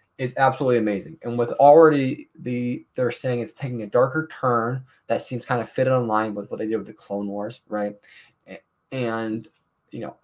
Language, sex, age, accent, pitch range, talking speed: English, male, 20-39, American, 110-135 Hz, 195 wpm